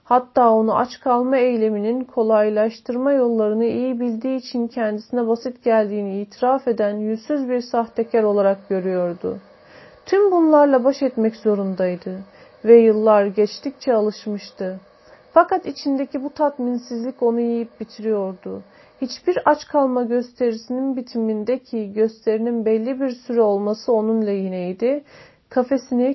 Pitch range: 220-265 Hz